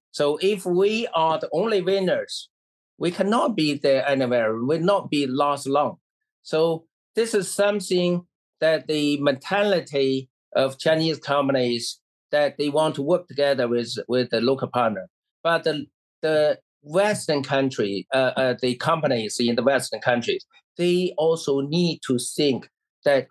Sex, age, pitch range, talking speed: male, 50-69, 125-165 Hz, 150 wpm